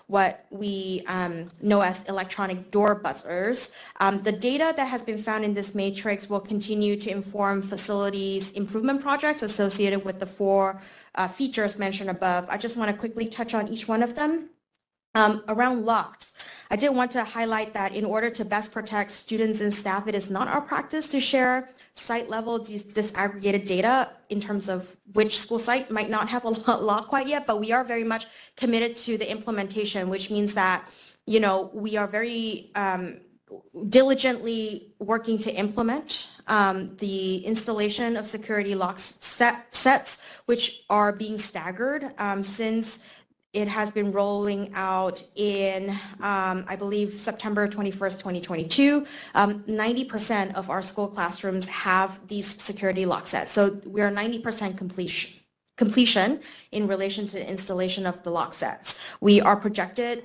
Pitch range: 195-230 Hz